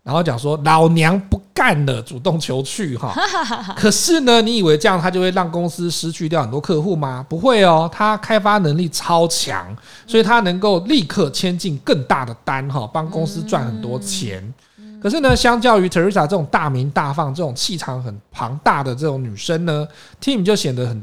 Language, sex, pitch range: Chinese, male, 135-190 Hz